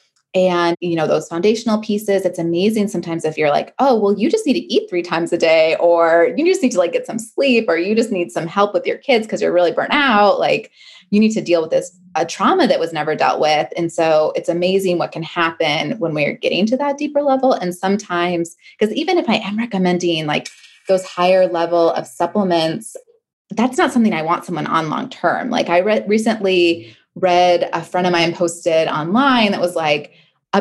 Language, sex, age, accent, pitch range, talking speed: English, female, 20-39, American, 170-225 Hz, 220 wpm